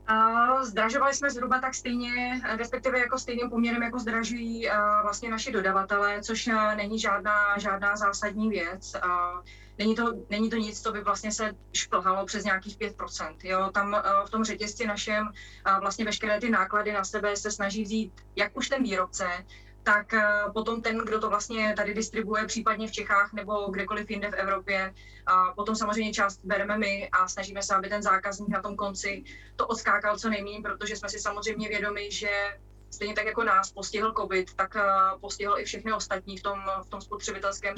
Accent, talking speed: native, 170 wpm